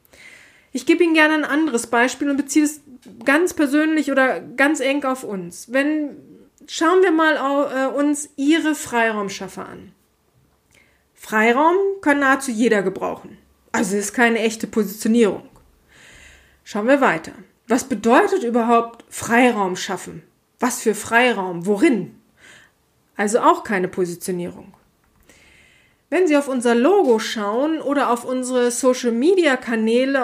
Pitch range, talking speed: 230-310 Hz, 125 wpm